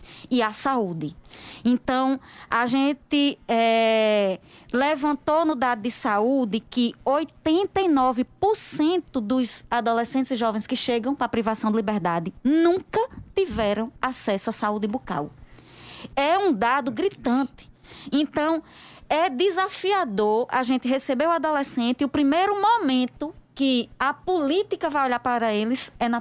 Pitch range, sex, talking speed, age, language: 235-315 Hz, female, 130 wpm, 20-39, Portuguese